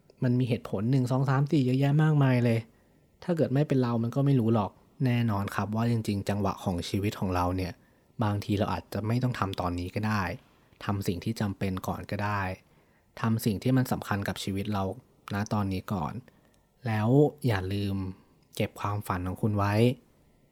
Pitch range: 95-120 Hz